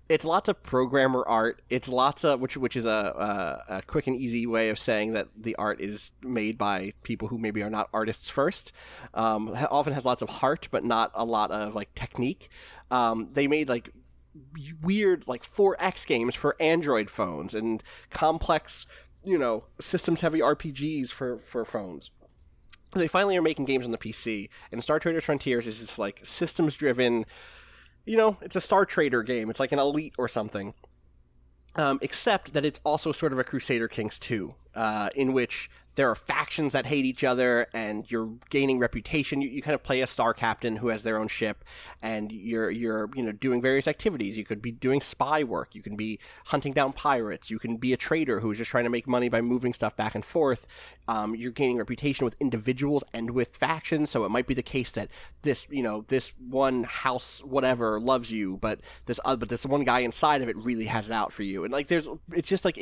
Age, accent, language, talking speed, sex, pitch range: 20-39, American, English, 210 wpm, male, 110-140 Hz